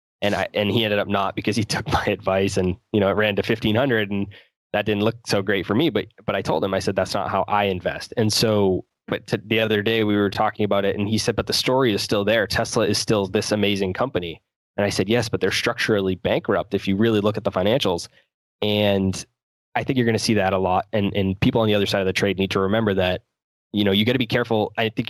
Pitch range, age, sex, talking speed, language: 95-110 Hz, 20-39, male, 275 wpm, English